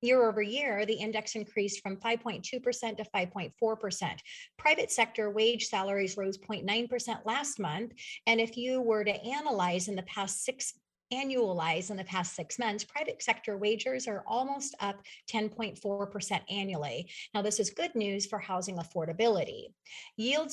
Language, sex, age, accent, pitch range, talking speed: English, female, 40-59, American, 195-235 Hz, 150 wpm